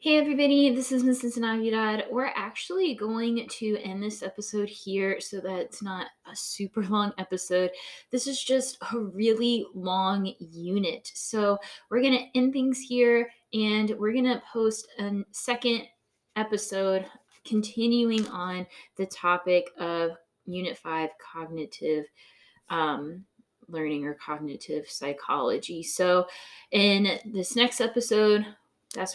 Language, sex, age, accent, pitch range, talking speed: English, female, 20-39, American, 175-235 Hz, 130 wpm